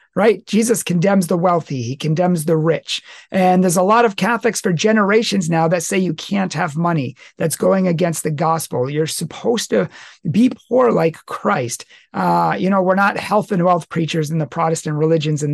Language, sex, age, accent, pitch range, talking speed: English, male, 40-59, American, 160-200 Hz, 195 wpm